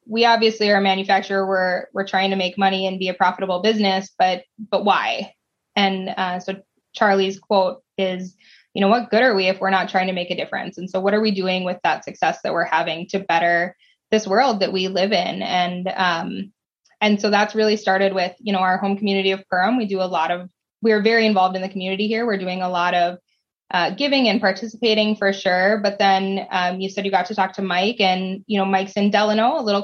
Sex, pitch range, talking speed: female, 185-210 Hz, 235 wpm